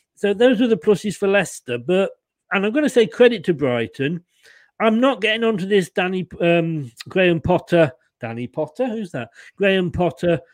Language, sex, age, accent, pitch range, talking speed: English, male, 40-59, British, 140-205 Hz, 175 wpm